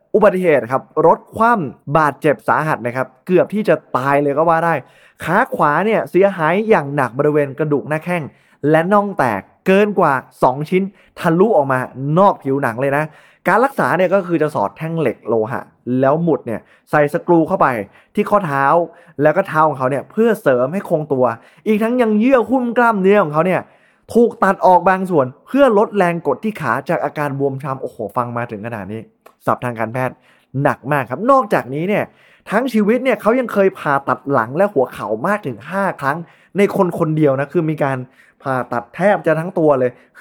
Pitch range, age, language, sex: 135-195 Hz, 20-39, Thai, male